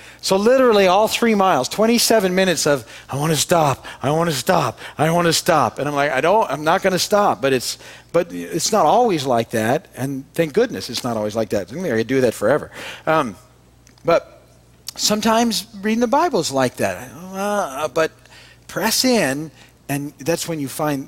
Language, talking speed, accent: English, 195 wpm, American